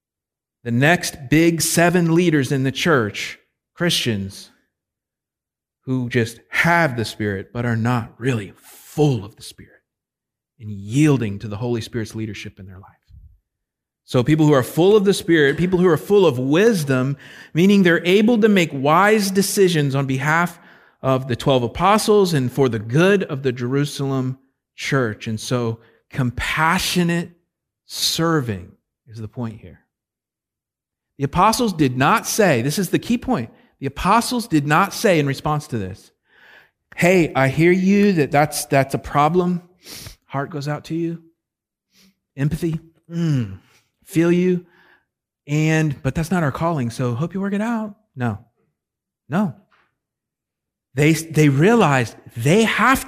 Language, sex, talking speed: English, male, 150 wpm